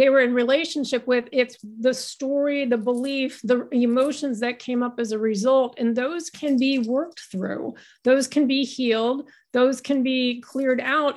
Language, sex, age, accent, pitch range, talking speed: English, female, 50-69, American, 235-275 Hz, 175 wpm